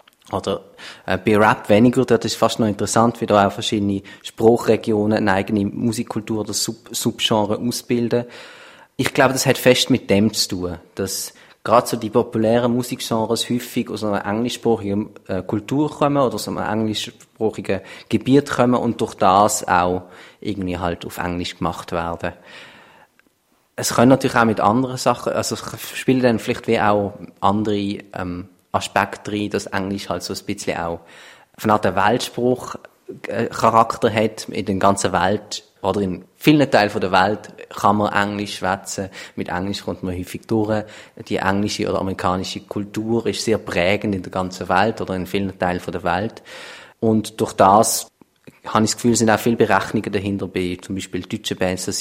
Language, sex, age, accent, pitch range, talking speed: German, male, 30-49, Austrian, 95-115 Hz, 165 wpm